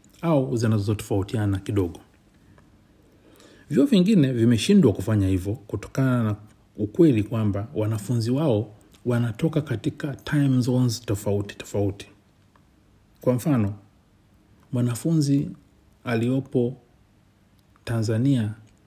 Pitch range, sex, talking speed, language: 100-125 Hz, male, 85 wpm, Swahili